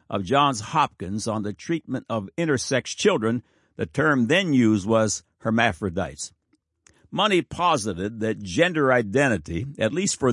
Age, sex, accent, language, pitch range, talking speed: 60-79, male, American, English, 110-150 Hz, 135 wpm